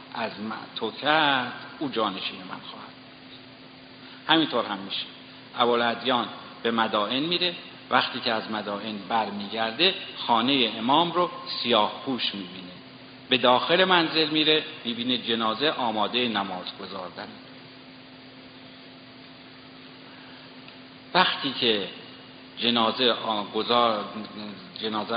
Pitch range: 110-150 Hz